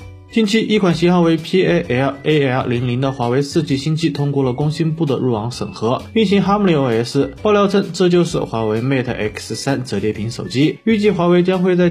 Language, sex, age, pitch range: Chinese, male, 20-39, 130-180 Hz